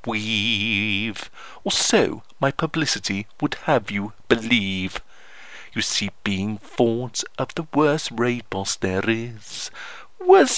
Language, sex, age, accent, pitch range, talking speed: English, male, 50-69, British, 110-175 Hz, 120 wpm